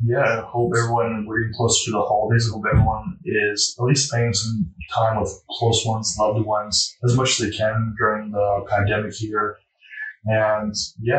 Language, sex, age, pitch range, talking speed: English, male, 20-39, 105-125 Hz, 180 wpm